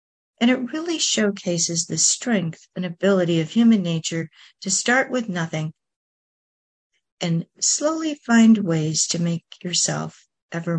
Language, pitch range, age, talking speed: English, 160-230 Hz, 50-69, 130 wpm